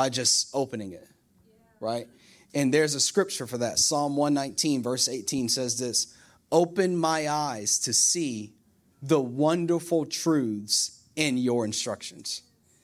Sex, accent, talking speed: male, American, 130 wpm